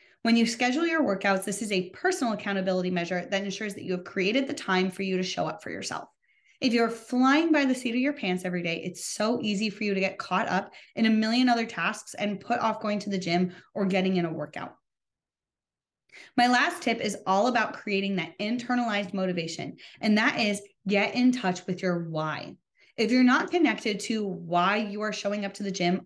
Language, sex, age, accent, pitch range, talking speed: English, female, 20-39, American, 190-245 Hz, 220 wpm